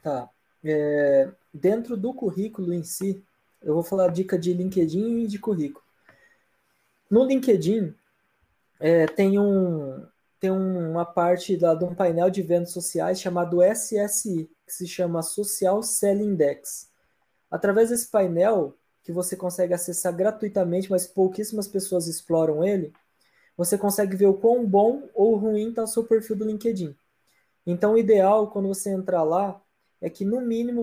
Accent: Brazilian